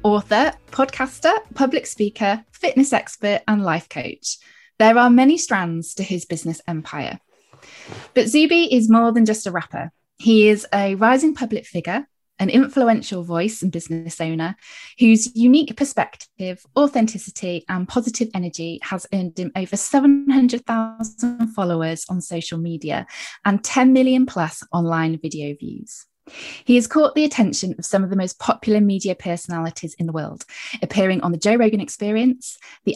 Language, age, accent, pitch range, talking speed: English, 10-29, British, 180-245 Hz, 150 wpm